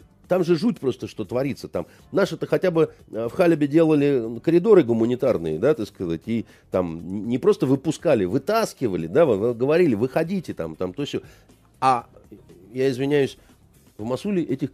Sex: male